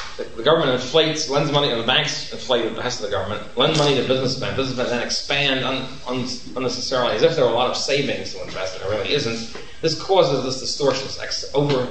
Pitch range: 120-145 Hz